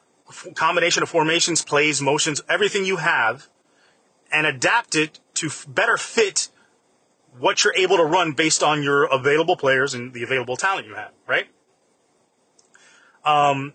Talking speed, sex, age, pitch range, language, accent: 140 wpm, male, 30-49, 135-170 Hz, English, American